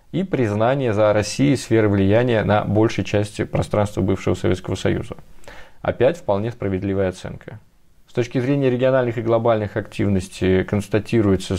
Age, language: 20-39, Russian